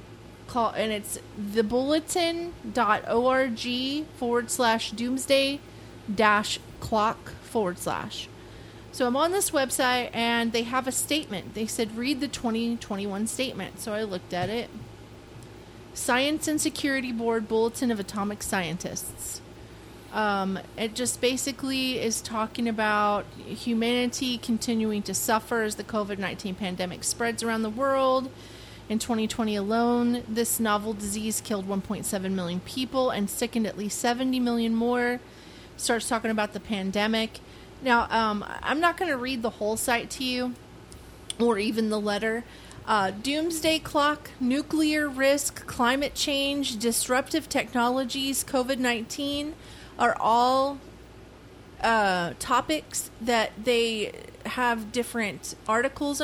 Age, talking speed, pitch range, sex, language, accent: 30-49, 125 wpm, 215-260 Hz, female, English, American